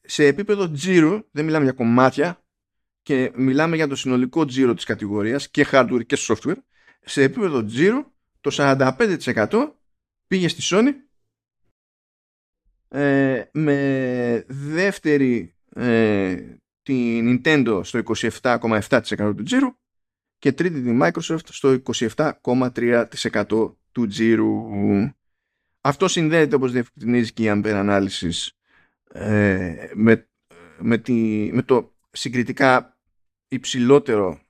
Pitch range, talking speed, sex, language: 110-145 Hz, 105 wpm, male, Greek